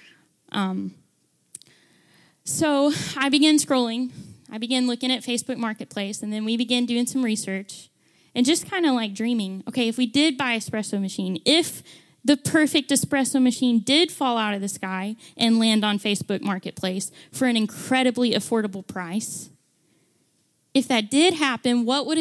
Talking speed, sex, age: 155 wpm, female, 10-29